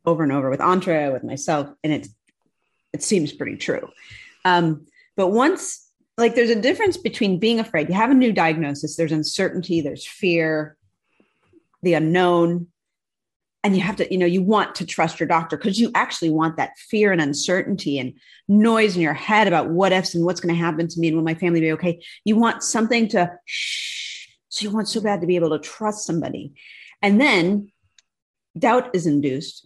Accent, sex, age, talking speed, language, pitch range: American, female, 40-59, 195 wpm, English, 155-215 Hz